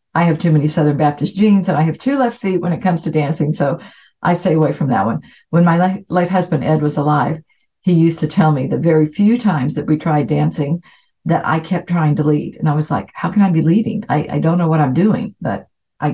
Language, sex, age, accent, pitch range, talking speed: English, female, 50-69, American, 155-195 Hz, 255 wpm